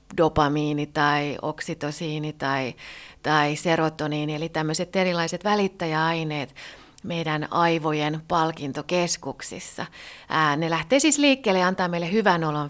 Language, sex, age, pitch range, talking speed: Finnish, female, 30-49, 155-210 Hz, 110 wpm